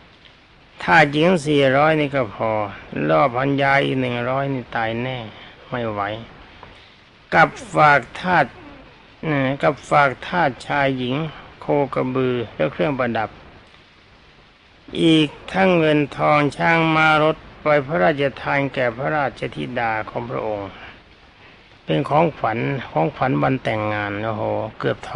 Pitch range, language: 120-160 Hz, Thai